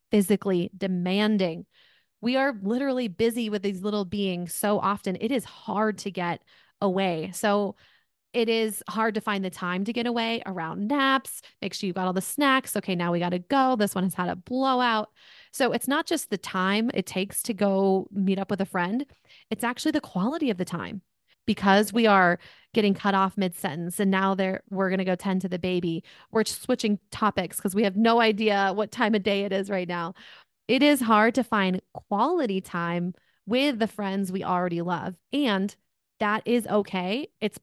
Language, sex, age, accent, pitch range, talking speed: English, female, 30-49, American, 185-230 Hz, 195 wpm